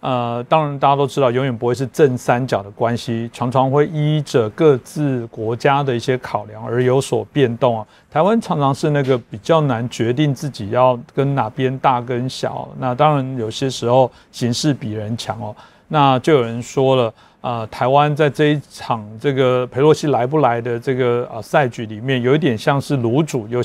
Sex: male